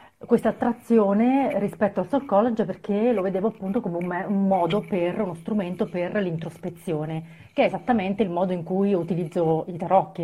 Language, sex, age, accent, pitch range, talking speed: Italian, female, 30-49, native, 170-205 Hz, 165 wpm